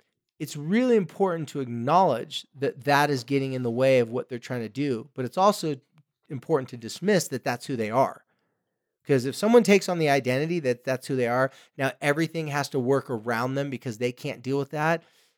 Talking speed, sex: 210 wpm, male